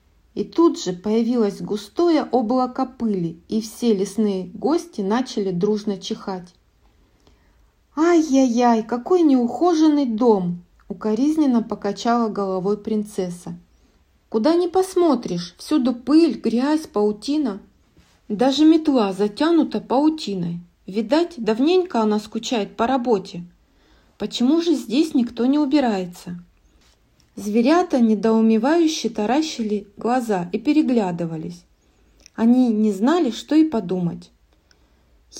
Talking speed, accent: 100 wpm, native